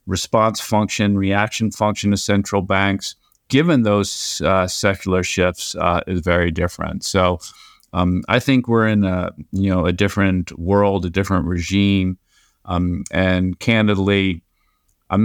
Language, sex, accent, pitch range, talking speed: English, male, American, 90-110 Hz, 140 wpm